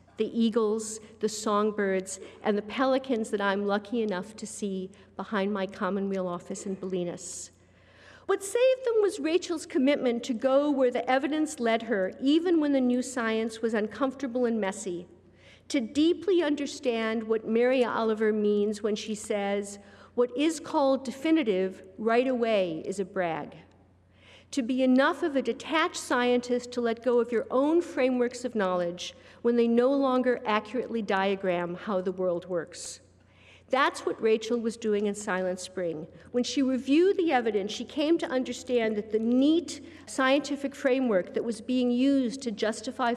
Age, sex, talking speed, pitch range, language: 50-69, female, 160 wpm, 200-260 Hz, English